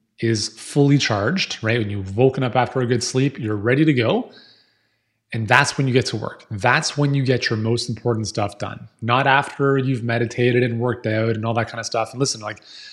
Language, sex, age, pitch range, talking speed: English, male, 30-49, 115-135 Hz, 225 wpm